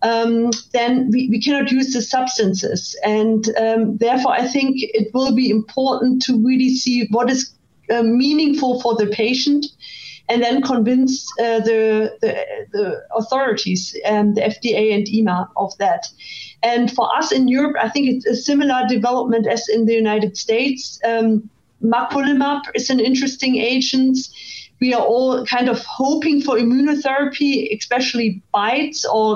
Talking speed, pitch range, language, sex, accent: 155 wpm, 225-265 Hz, English, female, German